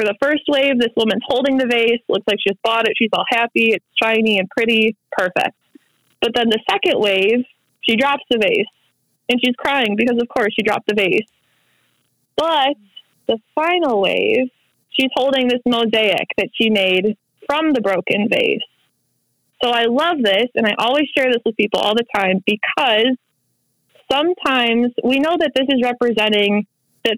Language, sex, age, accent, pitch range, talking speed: English, female, 20-39, American, 210-255 Hz, 170 wpm